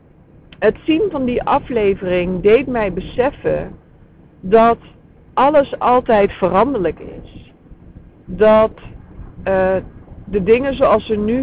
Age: 40-59